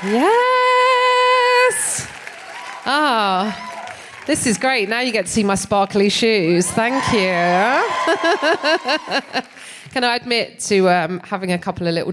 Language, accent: English, British